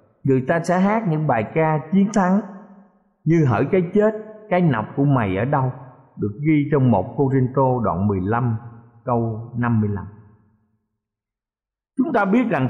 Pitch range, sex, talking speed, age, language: 115-170 Hz, male, 160 wpm, 50-69, Vietnamese